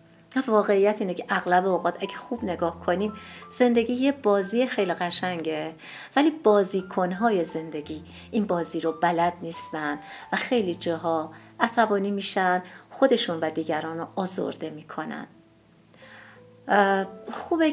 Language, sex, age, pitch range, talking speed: Persian, female, 50-69, 180-245 Hz, 120 wpm